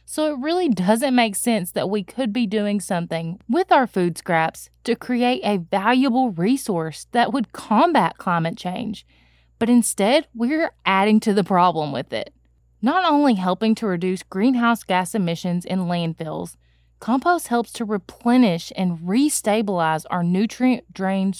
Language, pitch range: English, 180-250 Hz